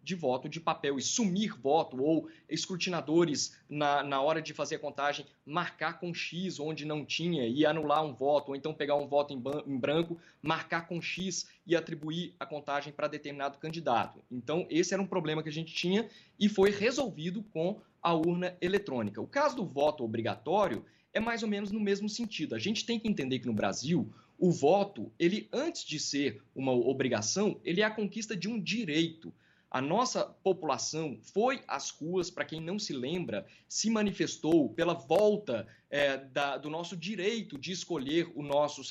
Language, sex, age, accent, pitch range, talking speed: Portuguese, male, 20-39, Brazilian, 145-200 Hz, 180 wpm